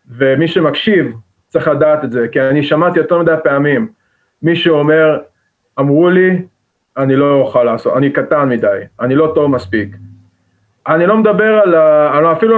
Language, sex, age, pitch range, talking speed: Hebrew, male, 30-49, 140-175 Hz, 155 wpm